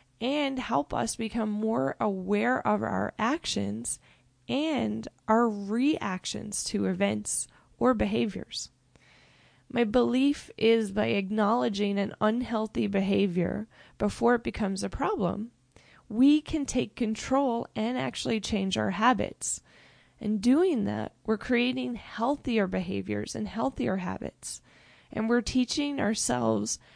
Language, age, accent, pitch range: English, 20-39, American, 190-250 Hz